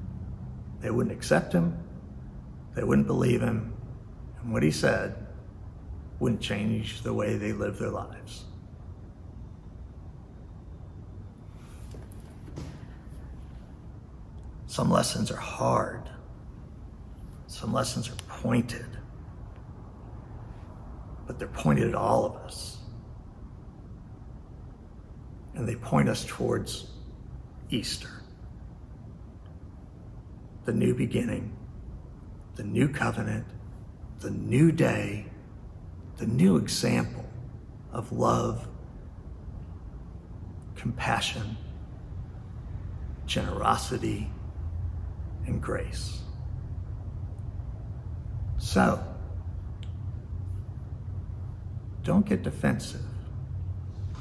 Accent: American